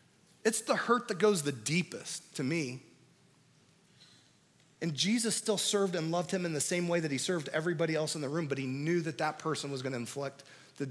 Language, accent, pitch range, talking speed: English, American, 160-225 Hz, 210 wpm